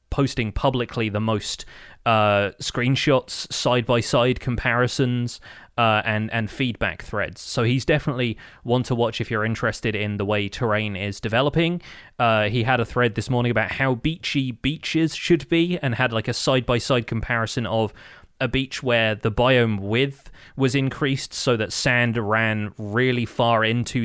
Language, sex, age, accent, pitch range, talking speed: English, male, 20-39, British, 110-130 Hz, 165 wpm